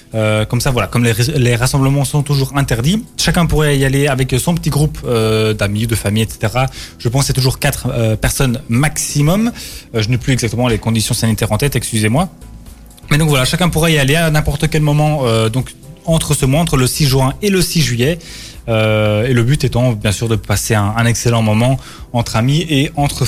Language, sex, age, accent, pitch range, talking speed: French, male, 20-39, French, 115-150 Hz, 215 wpm